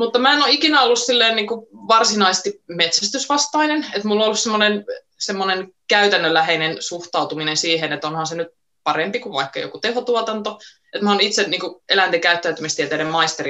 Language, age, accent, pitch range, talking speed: Finnish, 20-39, native, 155-215 Hz, 155 wpm